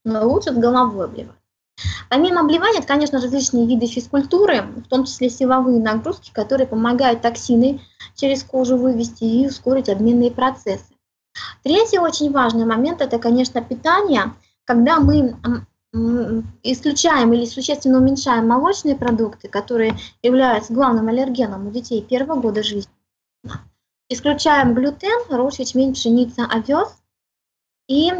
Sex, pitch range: female, 230-280 Hz